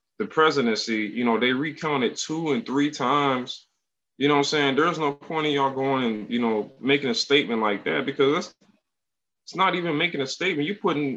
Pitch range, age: 130-165 Hz, 20-39